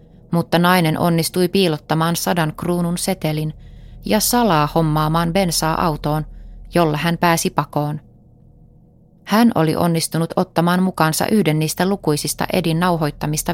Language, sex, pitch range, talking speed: Finnish, female, 155-185 Hz, 115 wpm